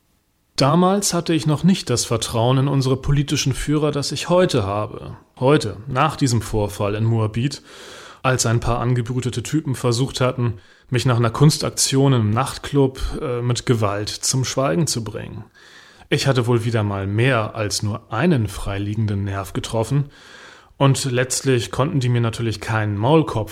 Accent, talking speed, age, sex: German, 155 wpm, 30-49, male